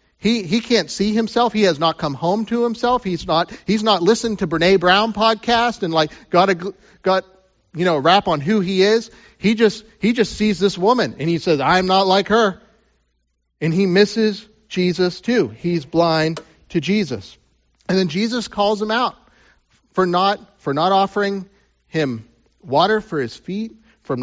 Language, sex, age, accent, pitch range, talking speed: English, male, 40-59, American, 135-200 Hz, 190 wpm